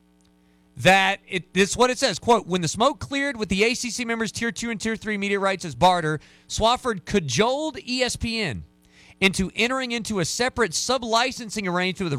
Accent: American